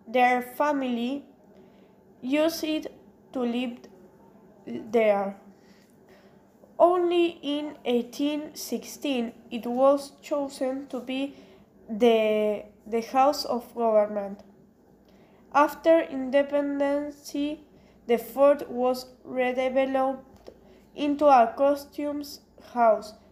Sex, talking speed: female, 75 wpm